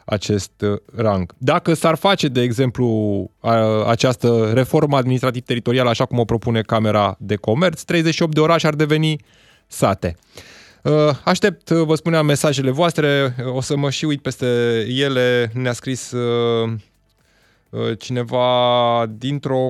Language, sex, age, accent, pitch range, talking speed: Romanian, male, 20-39, native, 110-140 Hz, 120 wpm